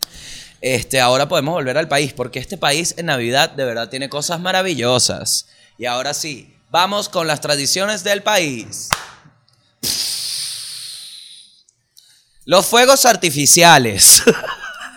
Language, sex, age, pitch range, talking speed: Spanish, male, 20-39, 125-170 Hz, 110 wpm